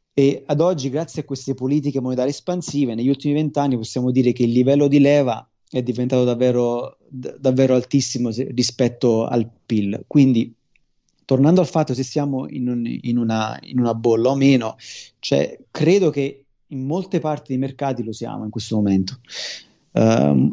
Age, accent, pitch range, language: 30-49, native, 120-145 Hz, Italian